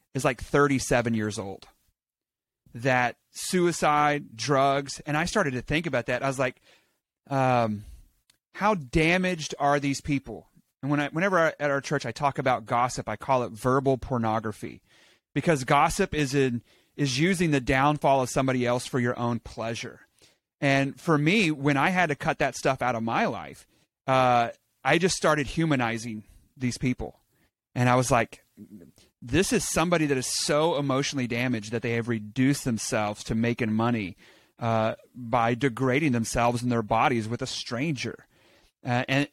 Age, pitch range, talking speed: 30-49, 120-150 Hz, 165 wpm